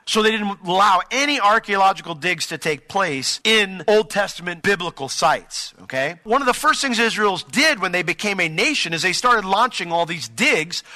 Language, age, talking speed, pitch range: English, 40-59, 190 wpm, 145-205 Hz